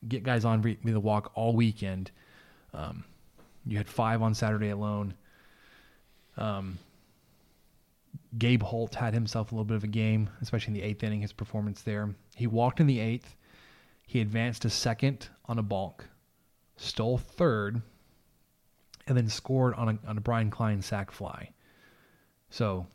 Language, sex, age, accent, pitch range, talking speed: English, male, 20-39, American, 105-120 Hz, 155 wpm